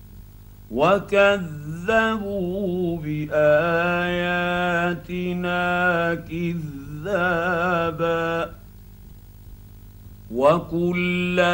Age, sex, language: 50-69, male, Arabic